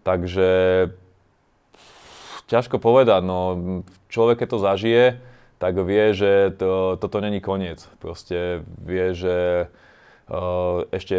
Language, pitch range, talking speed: Slovak, 90-95 Hz, 100 wpm